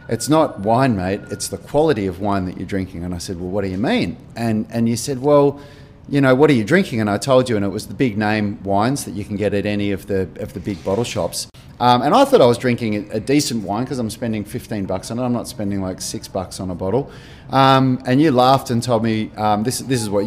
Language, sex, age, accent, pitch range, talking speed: English, male, 30-49, Australian, 105-130 Hz, 275 wpm